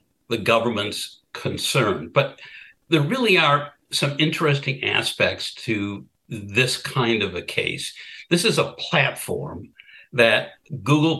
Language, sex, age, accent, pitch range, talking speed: English, male, 60-79, American, 125-165 Hz, 120 wpm